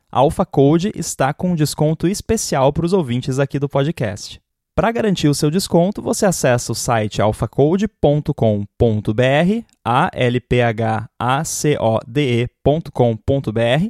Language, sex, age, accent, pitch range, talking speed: Portuguese, male, 20-39, Brazilian, 120-170 Hz, 105 wpm